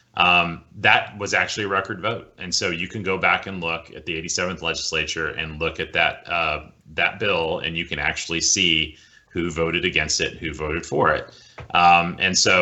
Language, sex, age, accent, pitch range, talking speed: English, male, 30-49, American, 75-90 Hz, 200 wpm